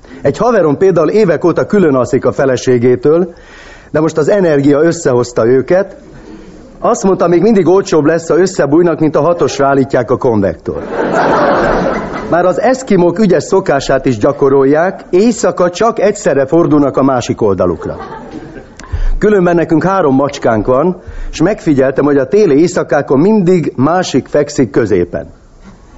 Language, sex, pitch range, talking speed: Hungarian, male, 140-180 Hz, 135 wpm